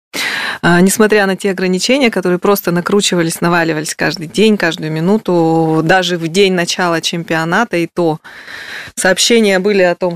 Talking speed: 135 wpm